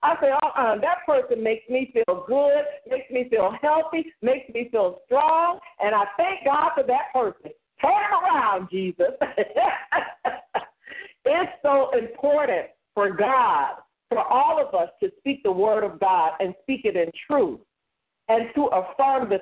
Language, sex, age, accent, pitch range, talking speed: English, female, 50-69, American, 205-280 Hz, 160 wpm